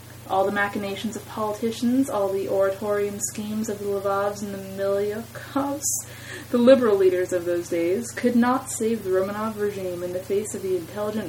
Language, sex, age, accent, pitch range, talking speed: English, female, 20-39, American, 180-235 Hz, 175 wpm